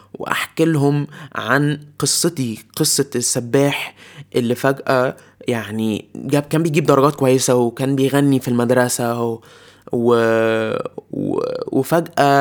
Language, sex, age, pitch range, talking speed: Arabic, male, 20-39, 125-155 Hz, 95 wpm